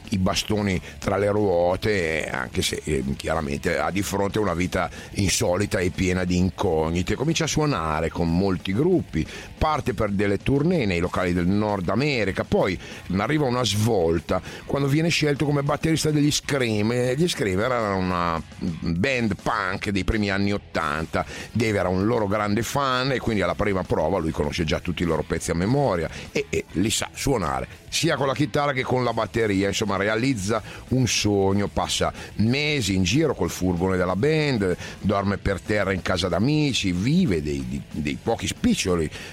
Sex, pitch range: male, 90-115 Hz